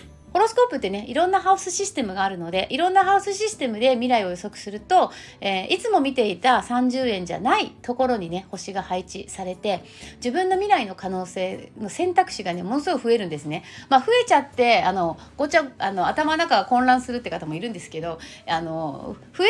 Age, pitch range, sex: 30-49, 185-300 Hz, female